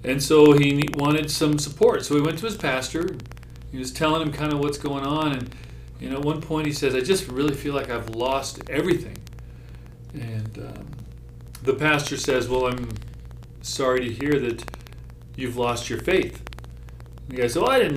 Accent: American